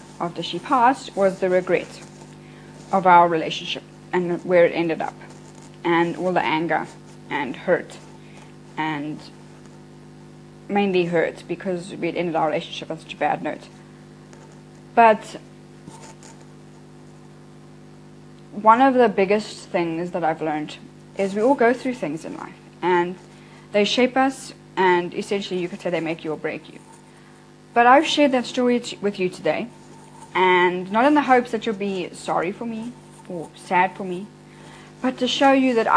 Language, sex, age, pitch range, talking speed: English, female, 20-39, 175-220 Hz, 155 wpm